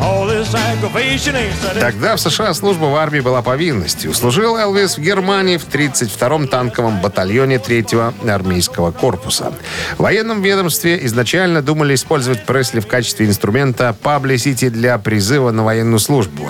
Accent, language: native, Russian